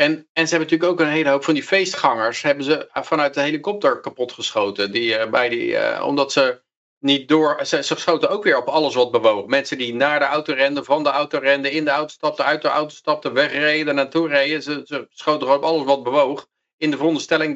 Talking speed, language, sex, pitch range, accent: 230 wpm, Dutch, male, 115-150 Hz, Dutch